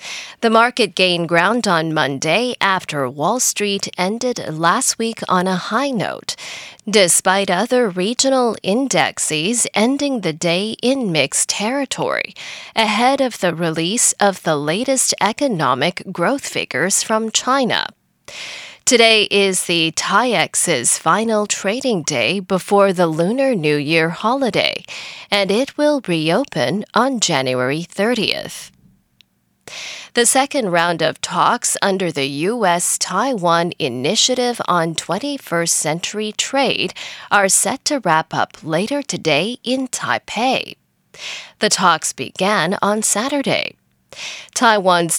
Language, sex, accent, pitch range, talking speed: English, female, American, 170-240 Hz, 115 wpm